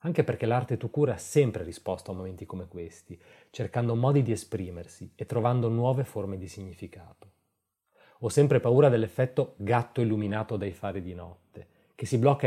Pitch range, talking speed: 100-125 Hz, 165 wpm